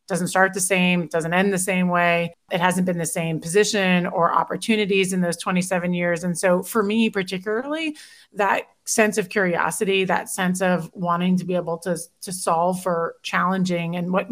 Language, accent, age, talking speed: English, American, 30-49, 185 wpm